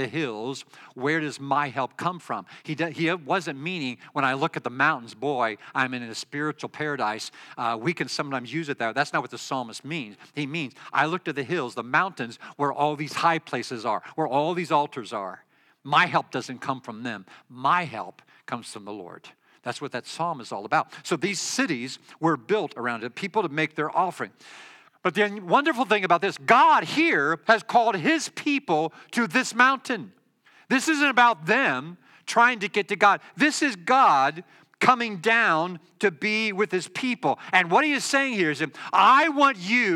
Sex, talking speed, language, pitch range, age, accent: male, 200 wpm, English, 150-240 Hz, 50-69, American